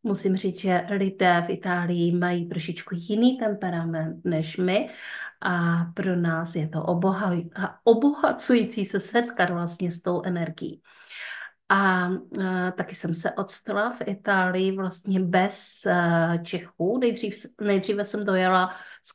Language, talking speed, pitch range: Czech, 120 wpm, 180-210 Hz